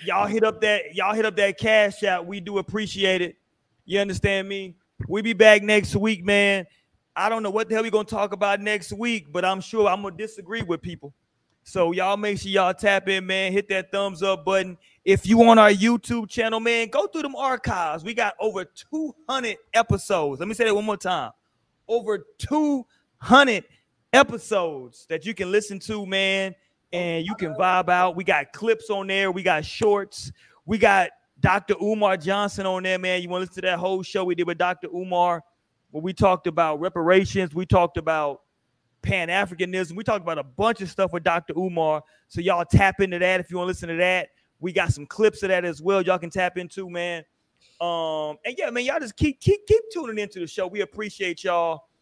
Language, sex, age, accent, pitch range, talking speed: English, male, 30-49, American, 180-210 Hz, 210 wpm